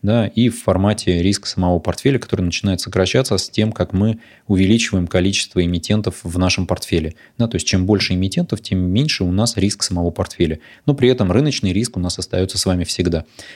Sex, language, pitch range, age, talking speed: male, Russian, 90-110 Hz, 20-39, 195 wpm